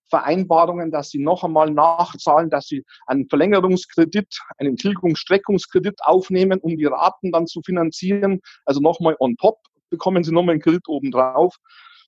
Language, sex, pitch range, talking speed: German, male, 170-245 Hz, 145 wpm